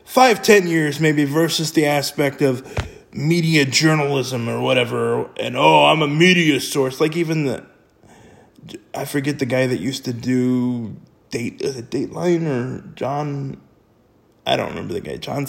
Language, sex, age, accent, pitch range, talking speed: English, male, 20-39, American, 135-170 Hz, 160 wpm